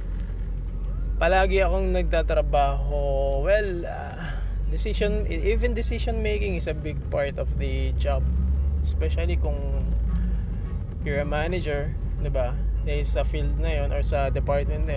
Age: 20-39